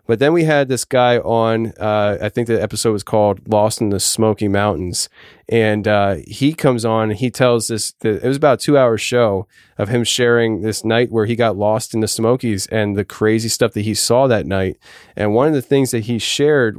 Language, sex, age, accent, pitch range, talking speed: English, male, 20-39, American, 105-120 Hz, 225 wpm